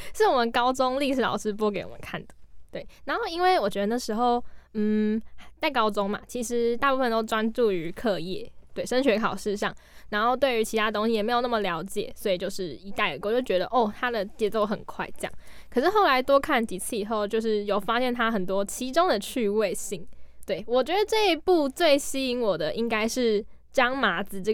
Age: 10-29